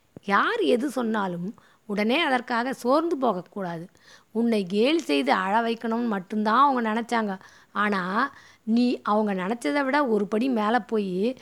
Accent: native